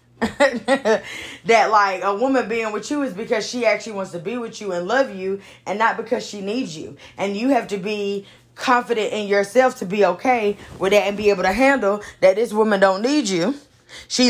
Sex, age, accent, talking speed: female, 10-29, American, 210 wpm